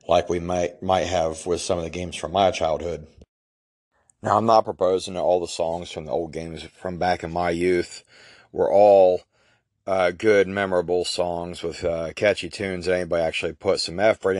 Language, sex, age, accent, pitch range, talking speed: English, male, 40-59, American, 85-95 Hz, 190 wpm